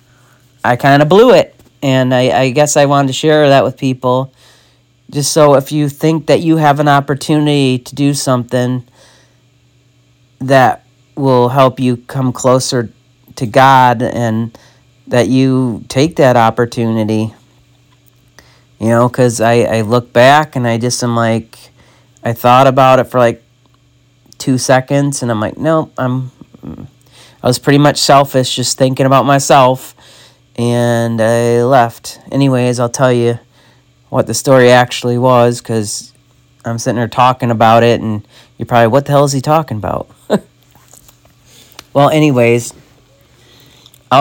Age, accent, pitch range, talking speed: 40-59, American, 120-135 Hz, 150 wpm